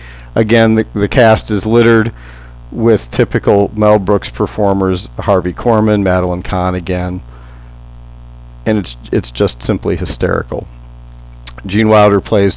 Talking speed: 120 wpm